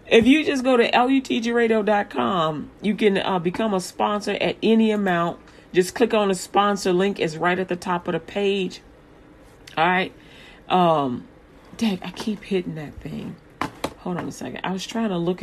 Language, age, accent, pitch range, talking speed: English, 40-59, American, 155-185 Hz, 180 wpm